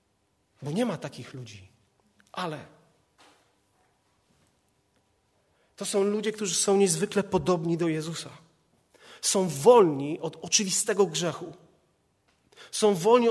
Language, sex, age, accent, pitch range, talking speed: Polish, male, 30-49, native, 140-220 Hz, 100 wpm